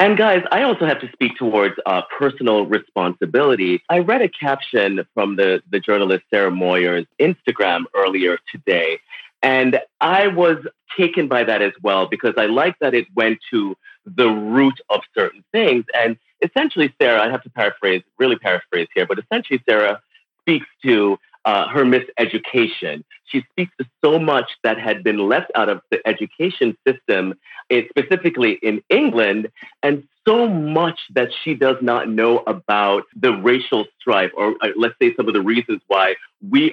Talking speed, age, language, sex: 165 wpm, 30-49, English, male